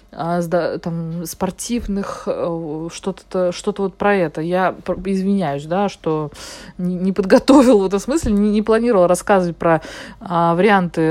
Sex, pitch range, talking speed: female, 175-240 Hz, 115 wpm